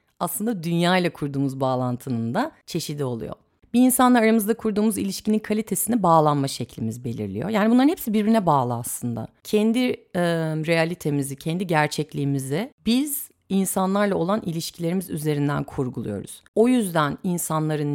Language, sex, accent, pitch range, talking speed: Turkish, female, native, 140-200 Hz, 120 wpm